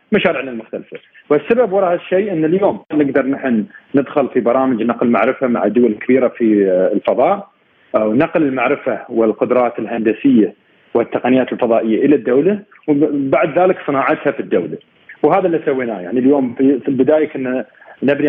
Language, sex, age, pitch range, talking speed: Arabic, male, 40-59, 120-155 Hz, 140 wpm